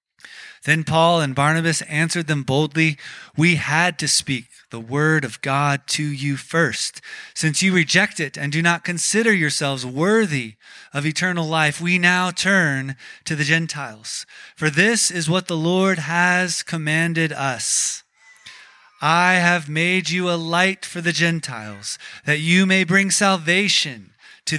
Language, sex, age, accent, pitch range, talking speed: English, male, 30-49, American, 140-175 Hz, 150 wpm